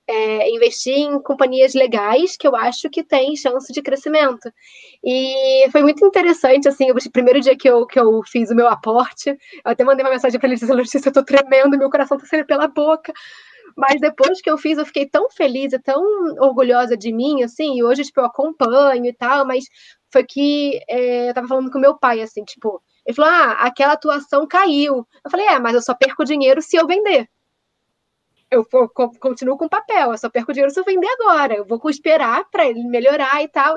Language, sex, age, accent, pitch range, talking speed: Portuguese, female, 10-29, Brazilian, 240-295 Hz, 205 wpm